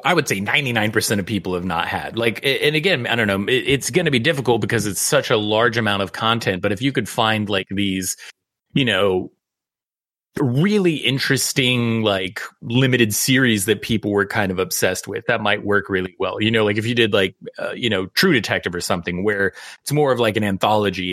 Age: 30-49